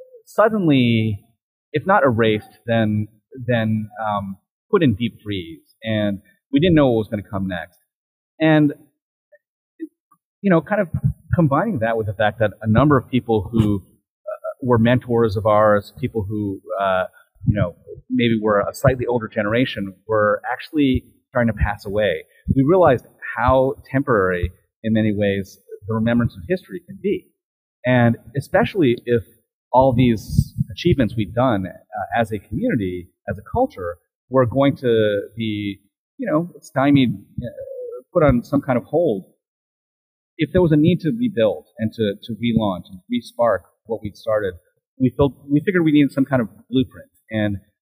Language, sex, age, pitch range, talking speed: English, male, 30-49, 105-145 Hz, 160 wpm